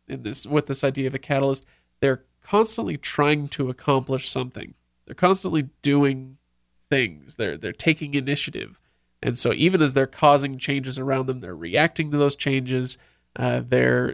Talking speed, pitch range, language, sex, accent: 160 wpm, 130-155 Hz, English, male, American